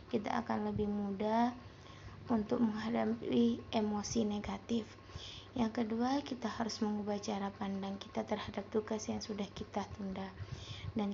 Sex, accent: female, native